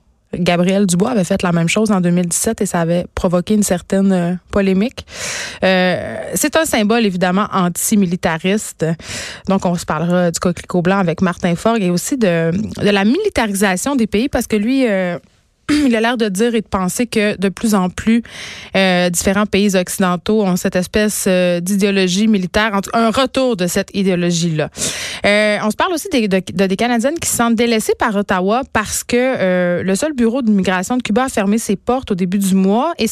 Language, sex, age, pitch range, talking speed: French, female, 20-39, 185-230 Hz, 190 wpm